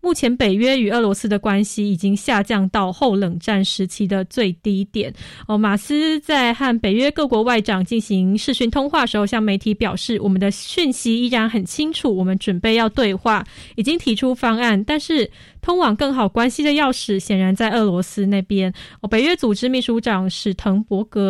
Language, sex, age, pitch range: Chinese, female, 20-39, 205-245 Hz